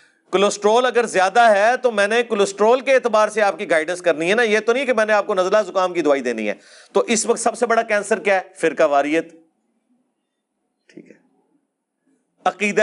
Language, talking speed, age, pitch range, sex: Urdu, 200 wpm, 40-59, 180-235 Hz, male